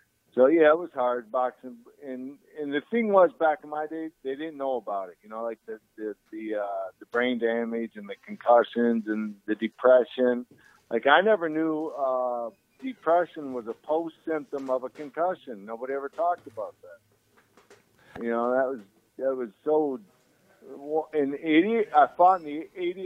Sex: male